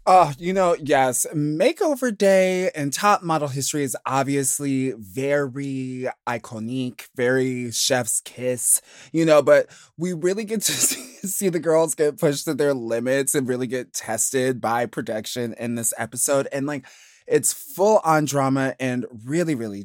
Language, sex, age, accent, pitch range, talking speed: English, male, 20-39, American, 130-195 Hz, 155 wpm